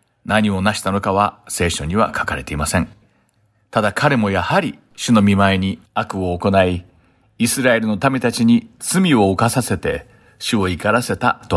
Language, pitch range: Japanese, 100-125 Hz